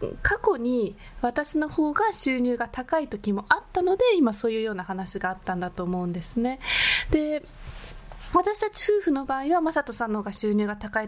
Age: 20-39